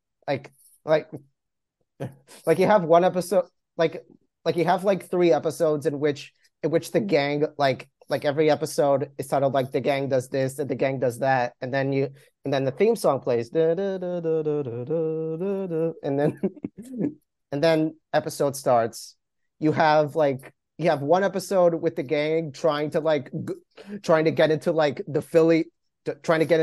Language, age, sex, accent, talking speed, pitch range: English, 30-49, male, American, 170 wpm, 140-165 Hz